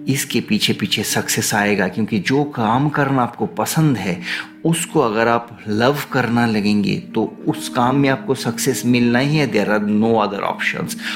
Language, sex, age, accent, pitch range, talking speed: English, male, 30-49, Indian, 105-130 Hz, 160 wpm